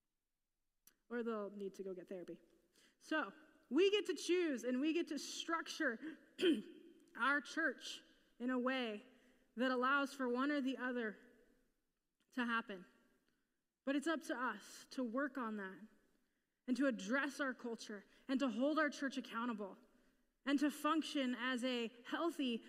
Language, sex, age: English, female, 20-39